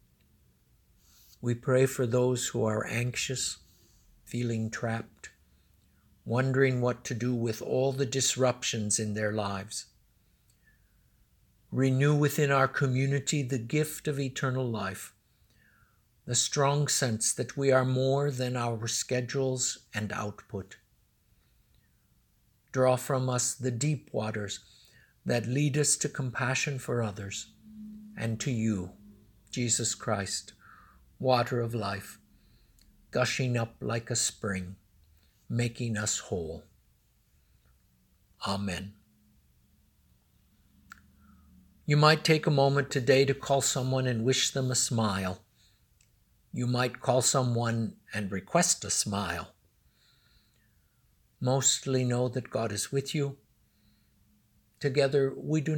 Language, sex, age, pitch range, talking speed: English, male, 60-79, 105-135 Hz, 110 wpm